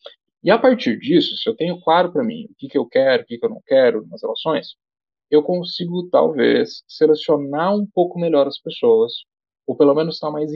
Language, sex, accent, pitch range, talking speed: Portuguese, male, Brazilian, 145-230 Hz, 210 wpm